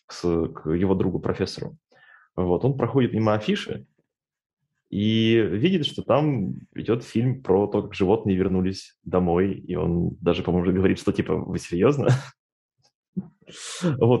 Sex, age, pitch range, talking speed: male, 20-39, 95-135 Hz, 125 wpm